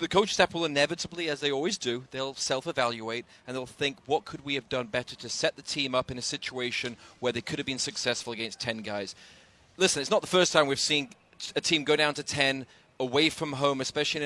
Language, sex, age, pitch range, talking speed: English, male, 30-49, 130-165 Hz, 230 wpm